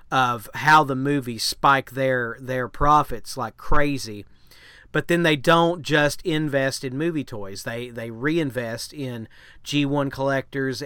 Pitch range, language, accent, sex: 125-155 Hz, English, American, male